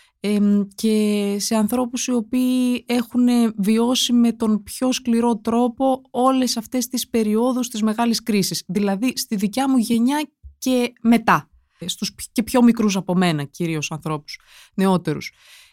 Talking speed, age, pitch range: 135 wpm, 20-39, 185-235 Hz